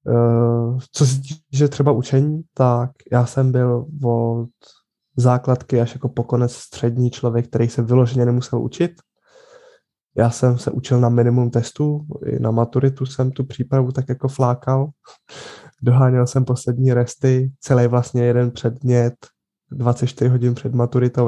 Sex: male